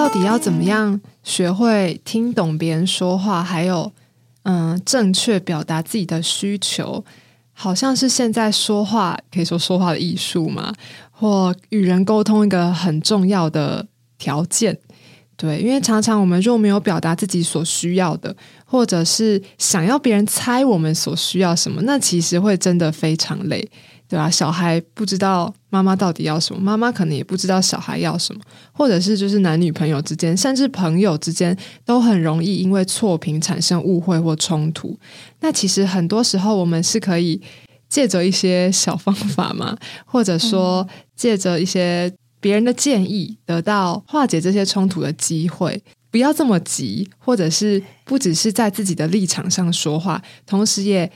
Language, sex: Chinese, female